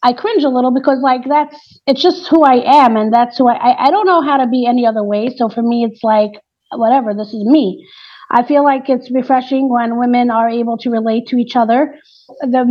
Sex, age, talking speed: female, 30-49, 235 wpm